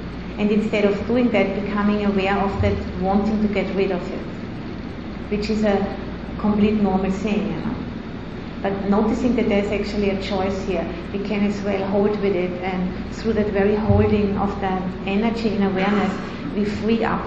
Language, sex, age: English, female, 30-49